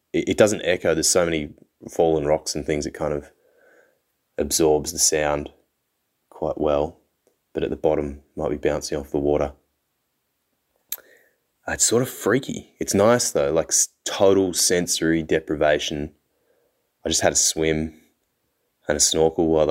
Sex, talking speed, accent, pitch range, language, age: male, 145 wpm, Australian, 75-90 Hz, English, 20-39